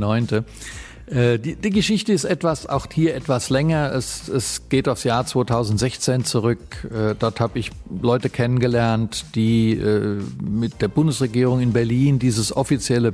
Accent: German